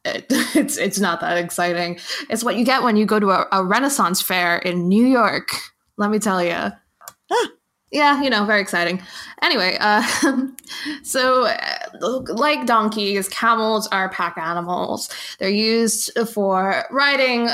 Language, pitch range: English, 190-240 Hz